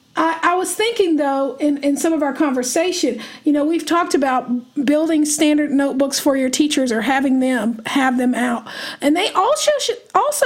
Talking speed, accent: 170 wpm, American